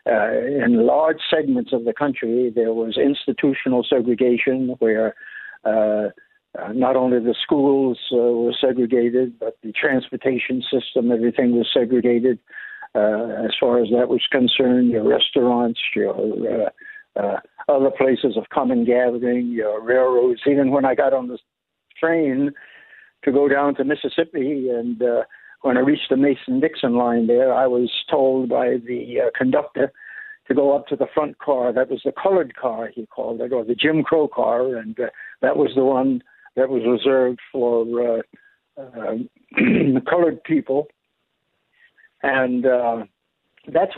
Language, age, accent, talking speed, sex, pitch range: English, 60-79, American, 155 wpm, male, 120-140 Hz